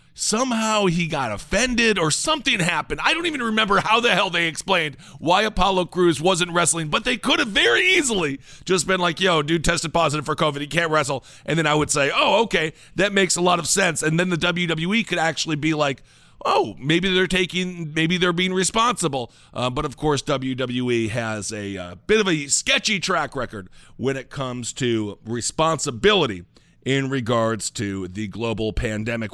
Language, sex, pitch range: English, male, 130-185 Hz